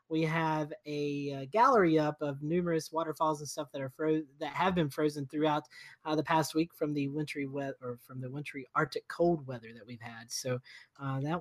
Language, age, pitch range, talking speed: English, 30-49, 155-200 Hz, 210 wpm